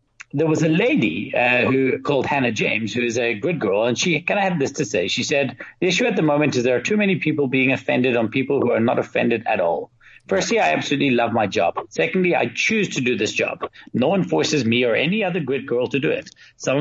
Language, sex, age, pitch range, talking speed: English, male, 40-59, 125-160 Hz, 255 wpm